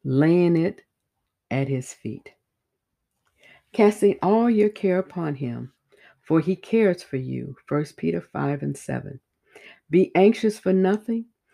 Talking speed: 130 wpm